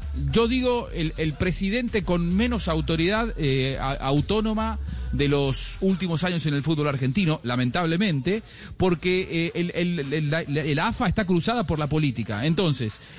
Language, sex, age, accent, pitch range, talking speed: Spanish, male, 40-59, Argentinian, 155-210 Hz, 145 wpm